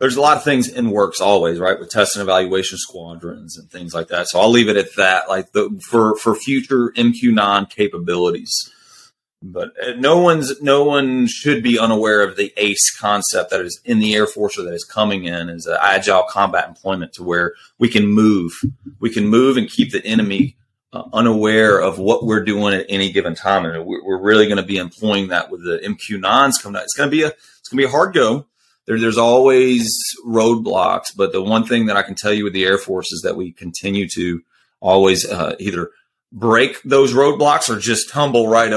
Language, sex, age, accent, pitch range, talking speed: English, male, 30-49, American, 95-125 Hz, 215 wpm